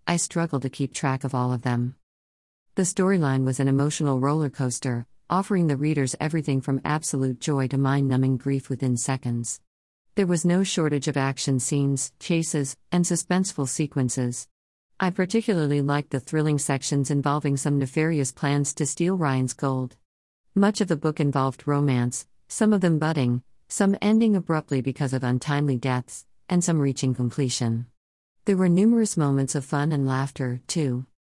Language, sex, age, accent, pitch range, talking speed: English, female, 50-69, American, 130-165 Hz, 160 wpm